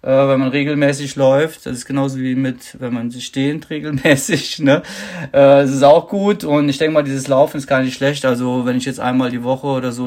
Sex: male